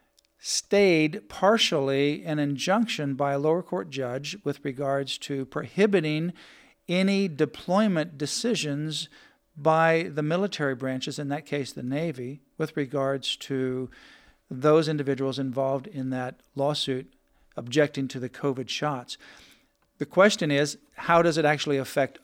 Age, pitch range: 50-69, 135-165 Hz